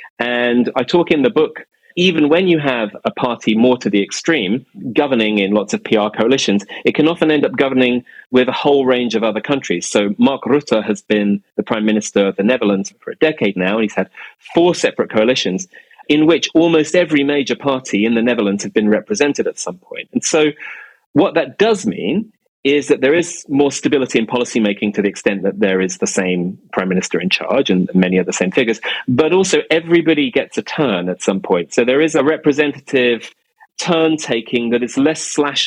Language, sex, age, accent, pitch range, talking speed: English, male, 30-49, British, 105-150 Hz, 205 wpm